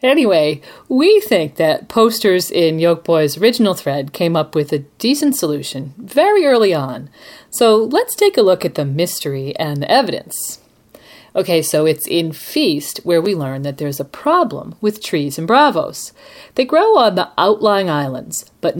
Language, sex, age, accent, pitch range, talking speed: English, female, 40-59, American, 150-235 Hz, 170 wpm